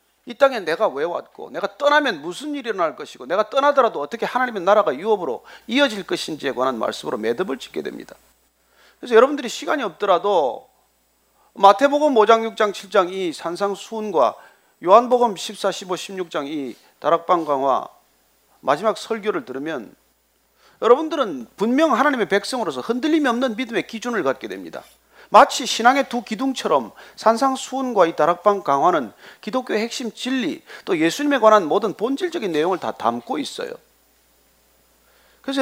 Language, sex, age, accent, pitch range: Korean, male, 40-59, native, 160-260 Hz